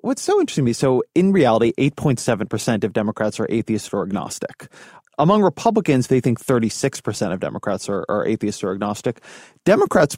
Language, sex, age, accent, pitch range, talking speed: English, male, 30-49, American, 110-145 Hz, 165 wpm